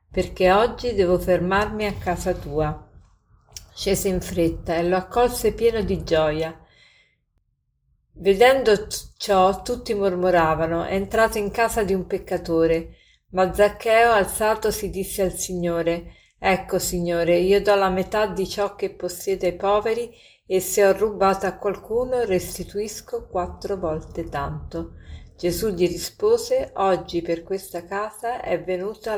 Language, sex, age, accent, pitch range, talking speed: Italian, female, 50-69, native, 170-205 Hz, 135 wpm